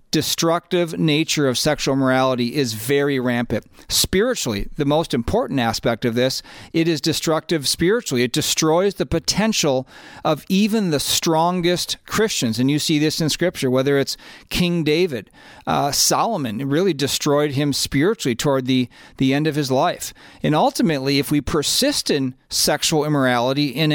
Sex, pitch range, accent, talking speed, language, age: male, 135-170 Hz, American, 155 wpm, English, 40-59